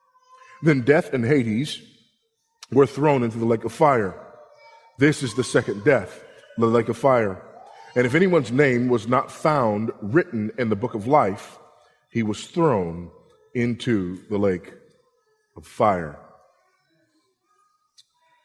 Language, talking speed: English, 135 wpm